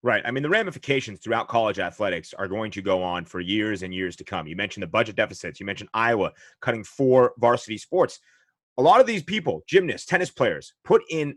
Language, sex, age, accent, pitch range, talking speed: English, male, 30-49, American, 115-150 Hz, 215 wpm